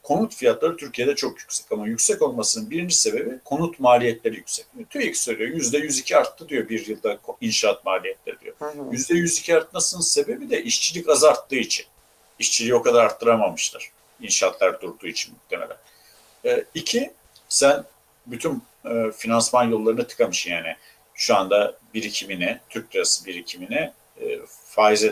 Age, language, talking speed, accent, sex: 50-69, Turkish, 145 wpm, native, male